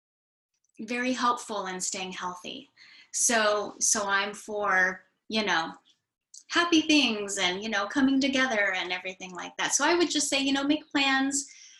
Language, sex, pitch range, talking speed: English, female, 195-255 Hz, 160 wpm